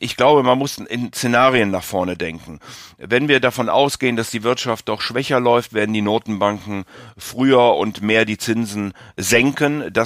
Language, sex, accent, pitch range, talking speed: German, male, German, 100-120 Hz, 175 wpm